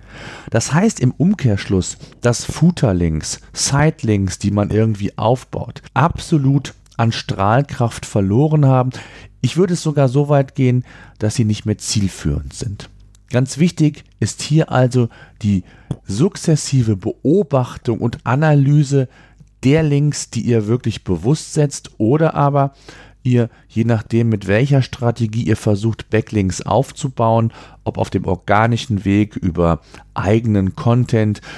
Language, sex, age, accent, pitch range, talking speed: German, male, 40-59, German, 105-140 Hz, 125 wpm